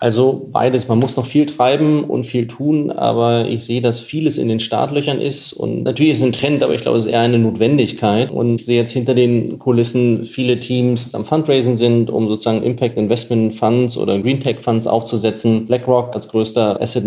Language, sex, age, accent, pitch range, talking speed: German, male, 30-49, German, 110-125 Hz, 205 wpm